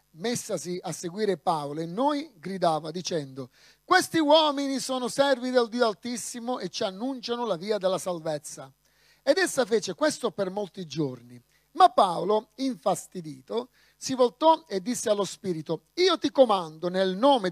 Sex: male